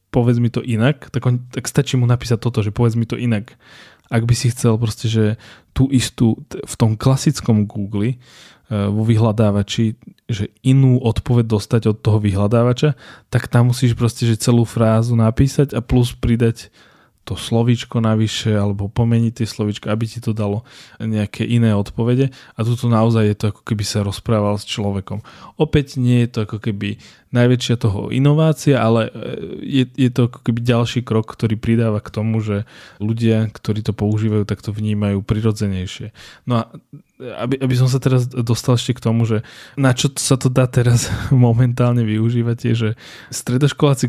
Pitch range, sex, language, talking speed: 110-125 Hz, male, Slovak, 170 wpm